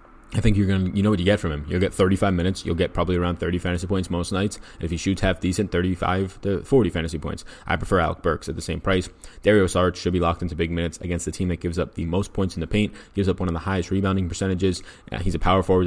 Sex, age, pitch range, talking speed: male, 20-39, 85-100 Hz, 285 wpm